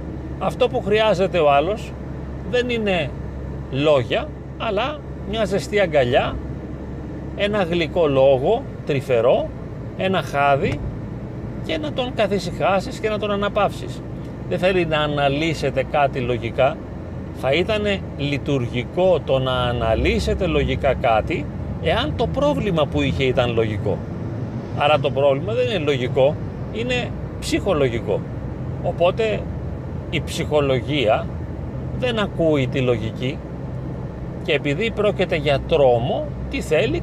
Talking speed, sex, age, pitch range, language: 110 wpm, male, 40-59, 125-190 Hz, Greek